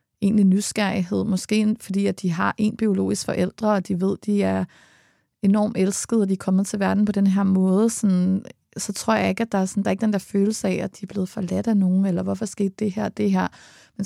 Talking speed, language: 240 wpm, Danish